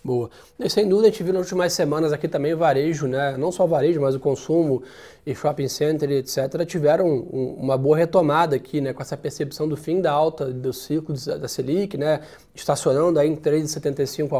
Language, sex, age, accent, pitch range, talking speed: Portuguese, male, 20-39, Brazilian, 150-190 Hz, 195 wpm